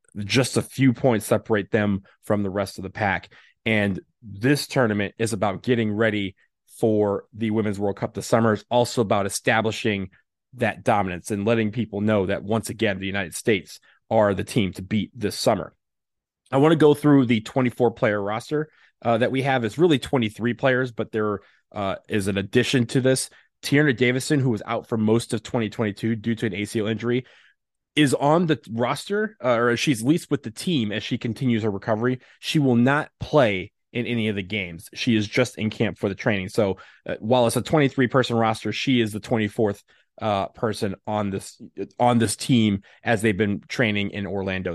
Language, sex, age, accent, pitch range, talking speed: English, male, 30-49, American, 105-125 Hz, 195 wpm